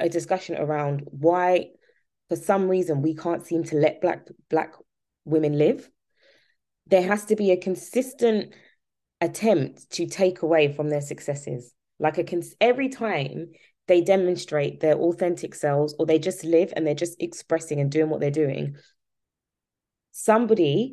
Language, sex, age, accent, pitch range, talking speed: English, female, 20-39, British, 145-170 Hz, 150 wpm